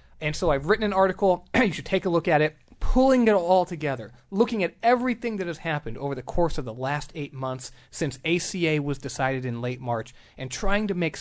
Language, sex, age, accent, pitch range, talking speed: English, male, 30-49, American, 130-175 Hz, 225 wpm